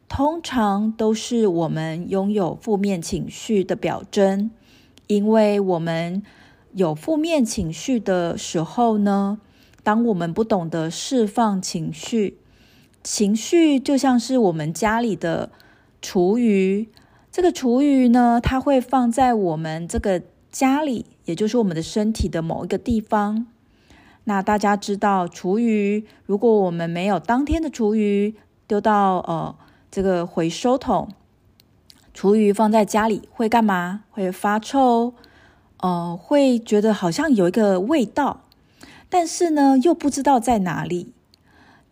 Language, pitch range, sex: Chinese, 190-240 Hz, female